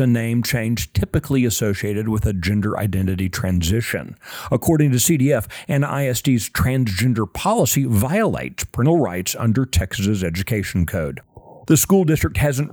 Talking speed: 125 wpm